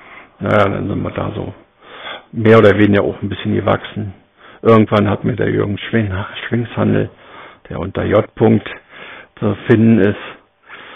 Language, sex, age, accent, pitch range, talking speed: German, male, 60-79, German, 100-115 Hz, 140 wpm